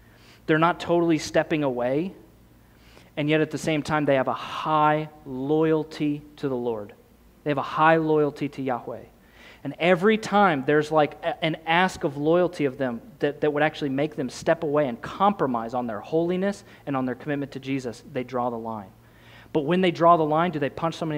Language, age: English, 30-49